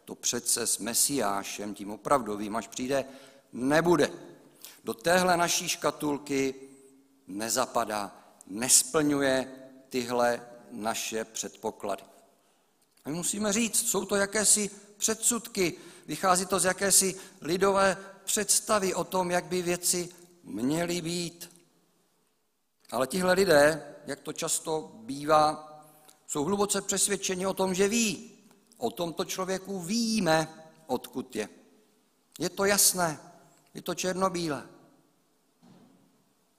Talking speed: 105 wpm